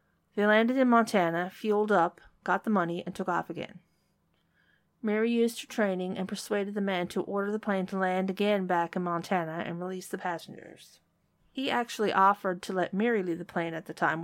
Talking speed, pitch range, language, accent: 200 wpm, 175-210 Hz, English, American